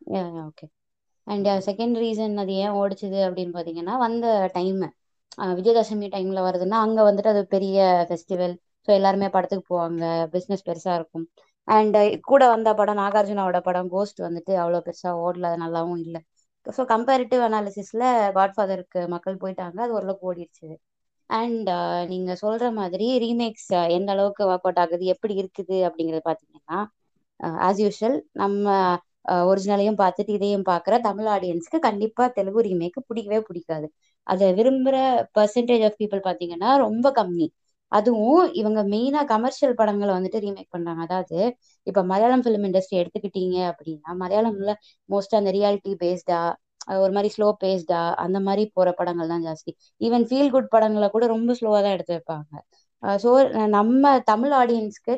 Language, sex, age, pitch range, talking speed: Tamil, female, 20-39, 180-220 Hz, 140 wpm